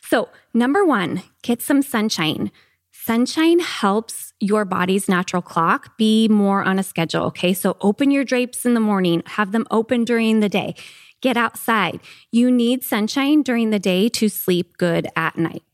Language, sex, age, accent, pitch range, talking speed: English, female, 20-39, American, 195-250 Hz, 170 wpm